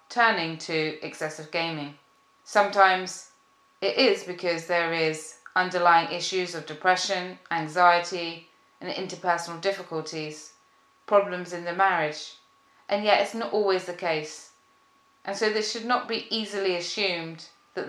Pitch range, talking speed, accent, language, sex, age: 170-205 Hz, 130 wpm, British, English, female, 20-39